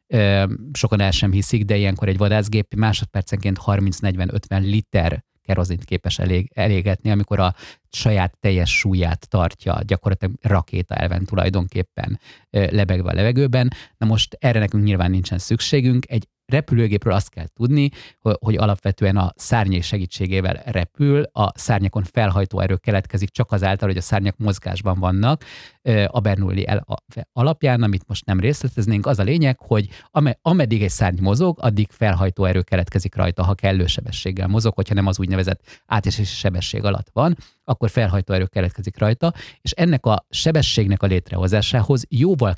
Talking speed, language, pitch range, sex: 145 wpm, Hungarian, 95-120 Hz, male